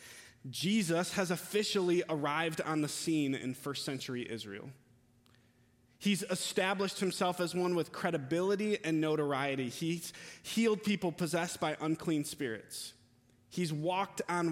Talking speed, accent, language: 120 wpm, American, English